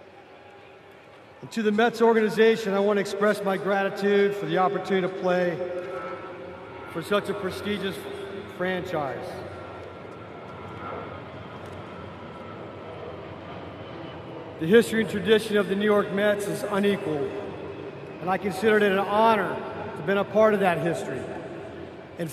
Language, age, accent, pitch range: English, 50-69, American, 190-215 Hz